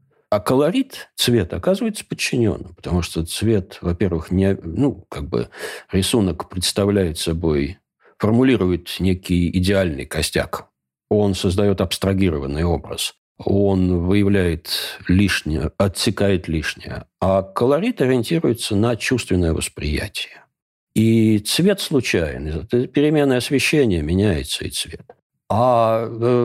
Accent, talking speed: native, 100 wpm